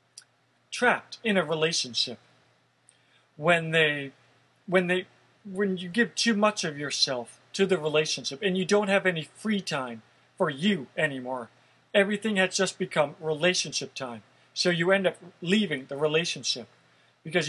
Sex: male